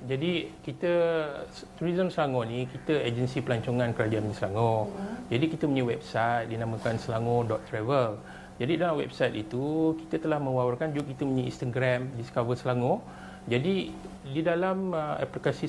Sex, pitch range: male, 130-170 Hz